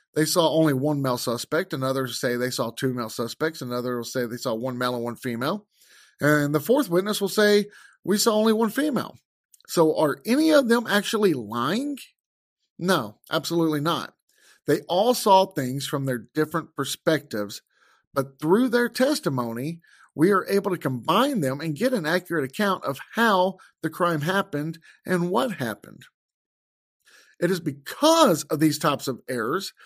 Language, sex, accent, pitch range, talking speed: English, male, American, 145-215 Hz, 170 wpm